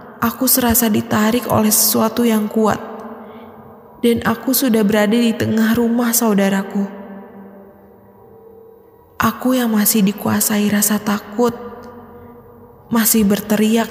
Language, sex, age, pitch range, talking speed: Indonesian, female, 20-39, 210-235 Hz, 100 wpm